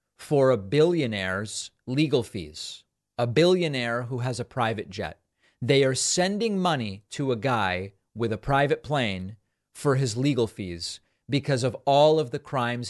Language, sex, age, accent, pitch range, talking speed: English, male, 40-59, American, 110-145 Hz, 155 wpm